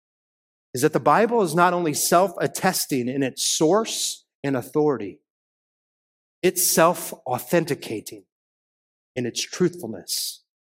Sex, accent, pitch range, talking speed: male, American, 130-180 Hz, 100 wpm